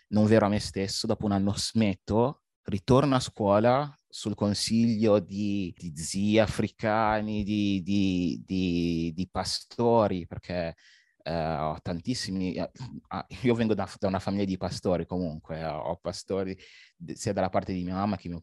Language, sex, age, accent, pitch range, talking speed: Italian, male, 30-49, native, 85-105 Hz, 145 wpm